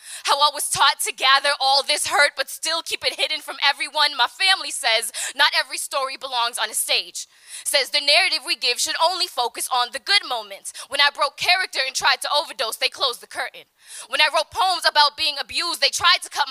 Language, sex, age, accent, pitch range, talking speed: English, female, 10-29, American, 300-380 Hz, 220 wpm